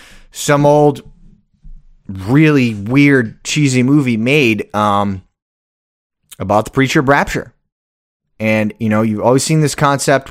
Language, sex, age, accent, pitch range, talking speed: English, male, 30-49, American, 110-155 Hz, 120 wpm